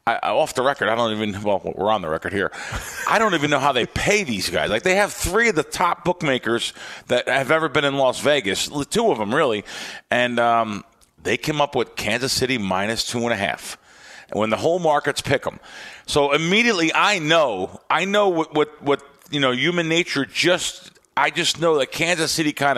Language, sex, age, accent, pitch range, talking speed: English, male, 40-59, American, 115-155 Hz, 215 wpm